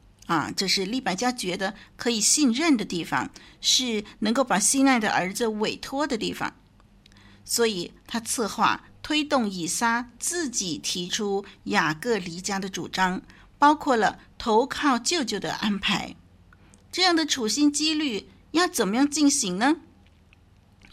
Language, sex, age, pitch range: Chinese, female, 50-69, 200-285 Hz